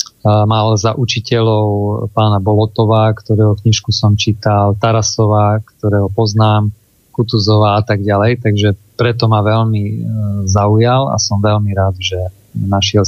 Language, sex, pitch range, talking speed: Slovak, male, 100-115 Hz, 125 wpm